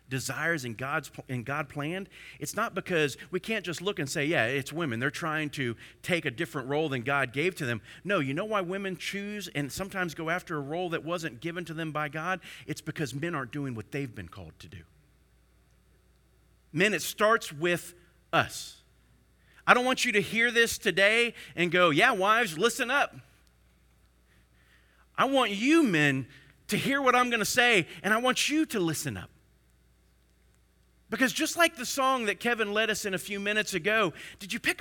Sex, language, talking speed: male, English, 195 wpm